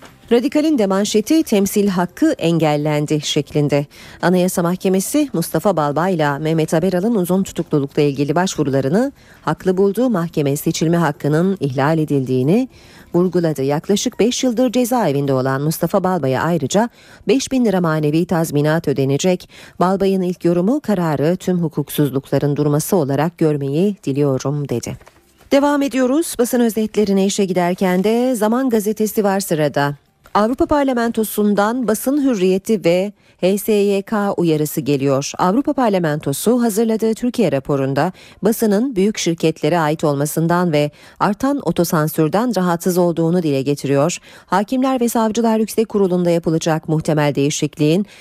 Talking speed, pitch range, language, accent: 120 wpm, 150-210 Hz, Turkish, native